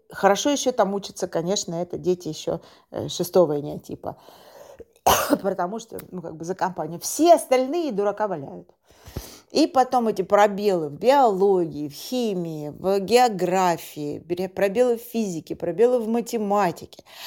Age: 40-59